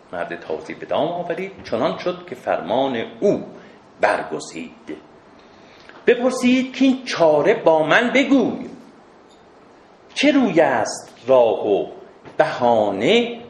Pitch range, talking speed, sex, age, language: 170-280 Hz, 100 wpm, male, 50-69, Persian